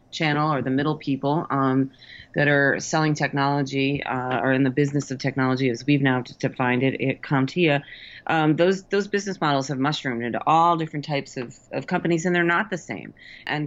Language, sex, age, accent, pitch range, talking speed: English, female, 30-49, American, 135-165 Hz, 195 wpm